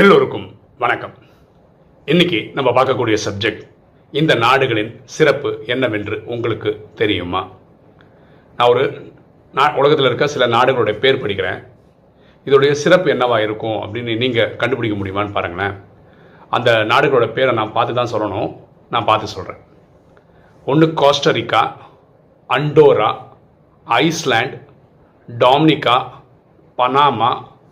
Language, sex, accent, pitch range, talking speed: Tamil, male, native, 135-160 Hz, 95 wpm